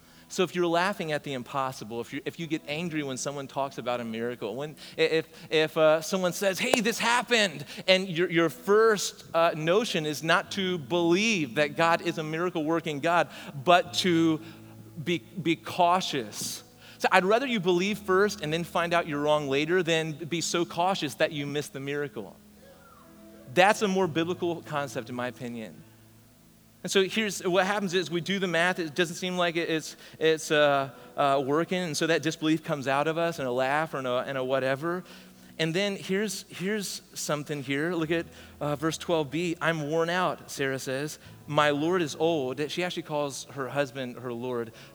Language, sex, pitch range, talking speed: English, male, 135-175 Hz, 190 wpm